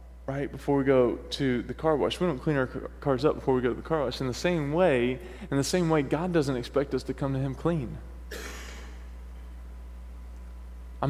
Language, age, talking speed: English, 20-39, 210 wpm